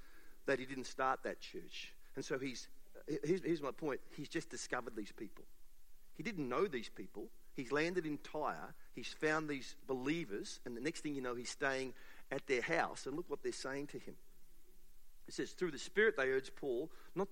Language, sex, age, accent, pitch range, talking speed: English, male, 50-69, Australian, 135-180 Hz, 200 wpm